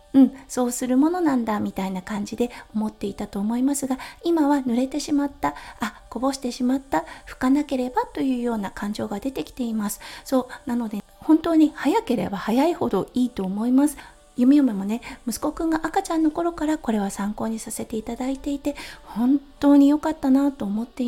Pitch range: 220-295 Hz